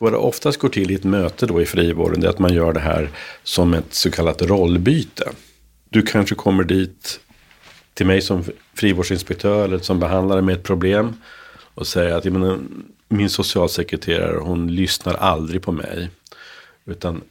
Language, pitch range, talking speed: Swedish, 85-105 Hz, 165 wpm